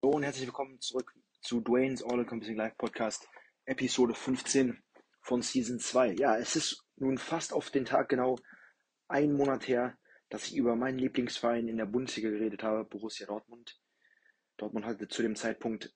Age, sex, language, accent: 20-39, male, English, German